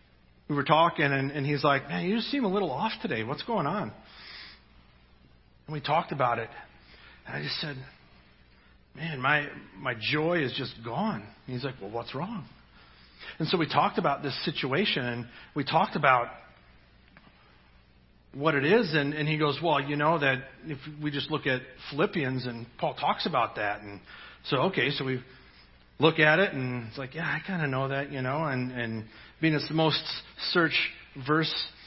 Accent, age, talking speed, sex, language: American, 40-59, 190 wpm, male, English